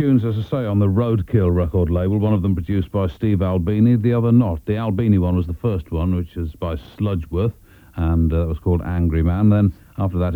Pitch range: 90-115 Hz